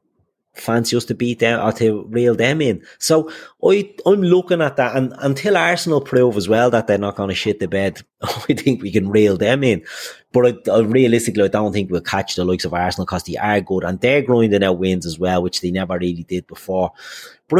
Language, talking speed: English, 230 wpm